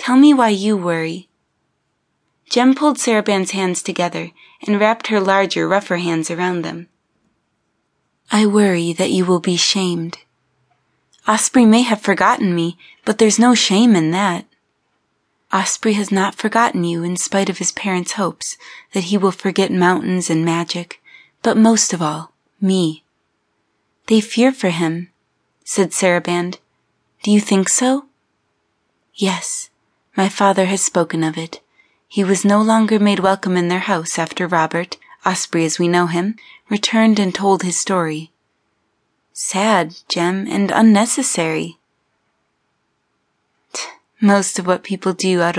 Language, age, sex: English, 20-39, female